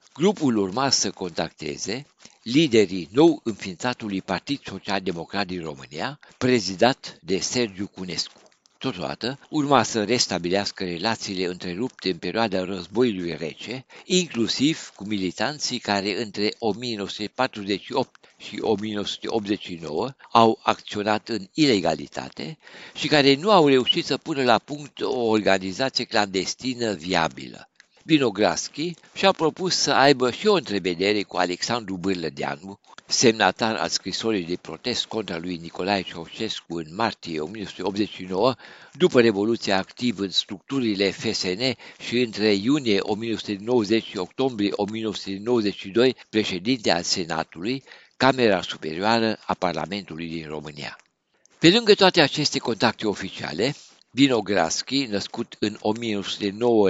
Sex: male